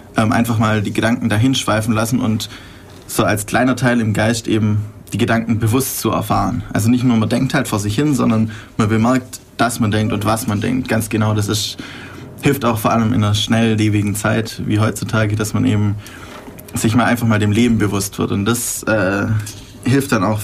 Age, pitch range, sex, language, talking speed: 20-39, 105-120 Hz, male, German, 210 wpm